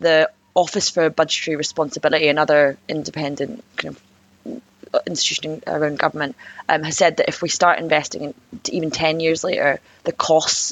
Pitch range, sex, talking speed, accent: 145-165 Hz, female, 155 wpm, British